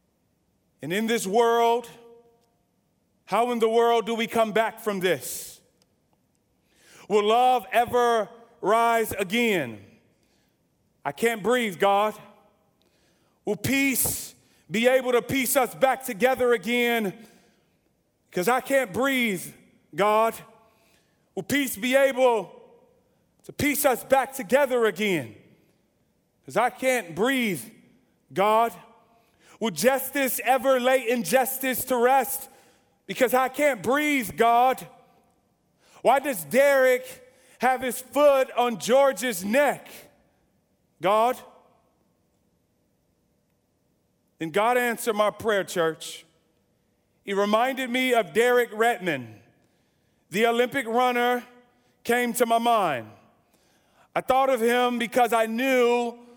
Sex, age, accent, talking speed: male, 40-59, American, 110 wpm